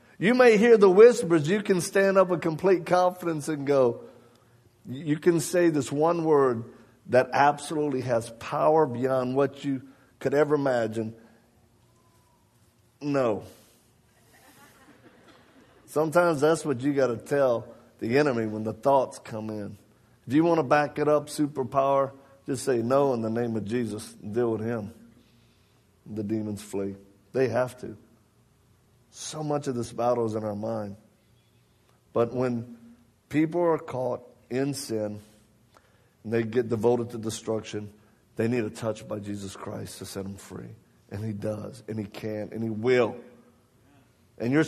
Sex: male